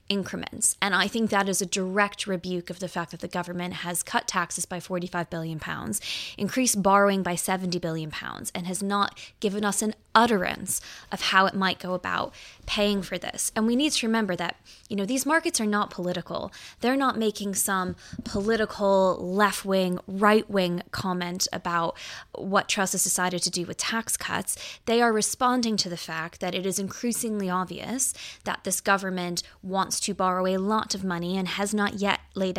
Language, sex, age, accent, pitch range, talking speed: English, female, 10-29, American, 180-205 Hz, 185 wpm